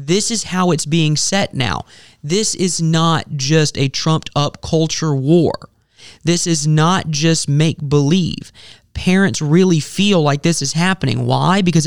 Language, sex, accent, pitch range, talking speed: English, male, American, 145-180 Hz, 145 wpm